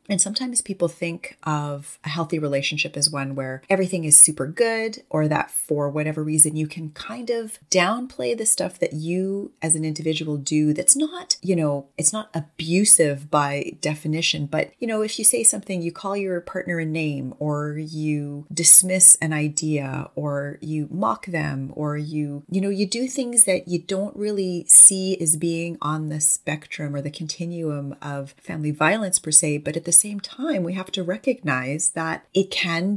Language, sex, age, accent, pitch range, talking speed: English, female, 30-49, American, 150-190 Hz, 185 wpm